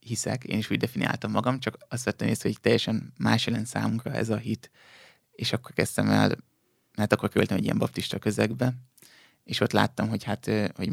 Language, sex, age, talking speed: Hungarian, male, 20-39, 190 wpm